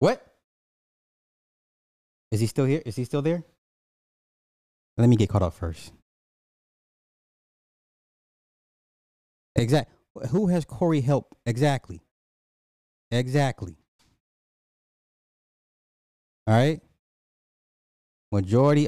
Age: 30-49